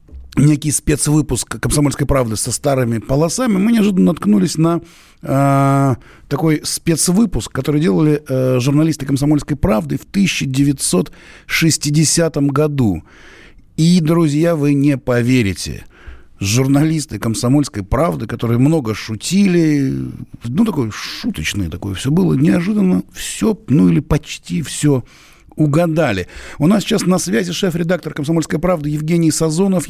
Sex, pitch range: male, 130-180 Hz